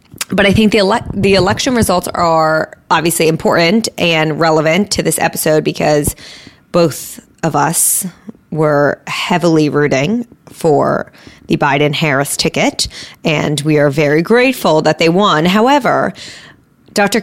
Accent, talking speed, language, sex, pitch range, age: American, 130 wpm, English, female, 165-230 Hz, 20-39